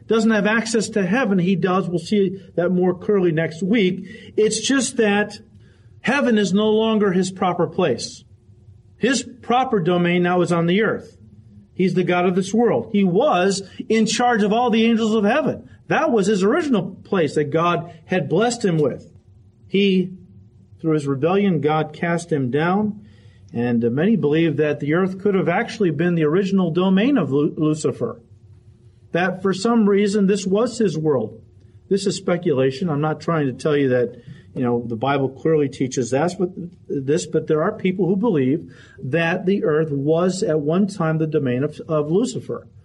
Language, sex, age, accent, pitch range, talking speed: English, male, 40-59, American, 145-195 Hz, 175 wpm